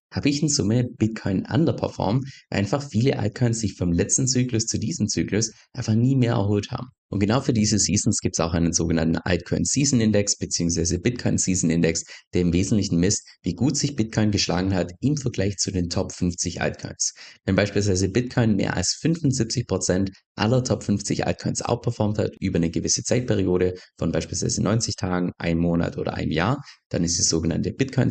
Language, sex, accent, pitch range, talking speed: German, male, German, 85-110 Hz, 185 wpm